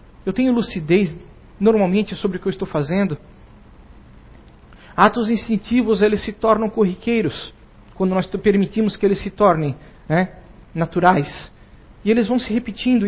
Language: Portuguese